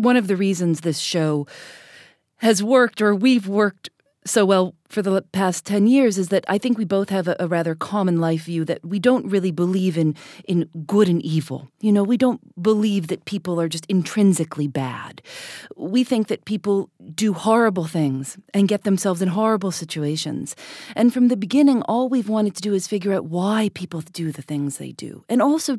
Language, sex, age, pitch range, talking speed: English, female, 40-59, 175-235 Hz, 200 wpm